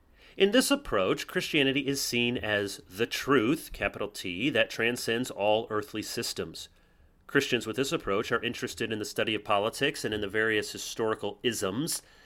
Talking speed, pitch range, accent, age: 160 wpm, 105-140 Hz, American, 30-49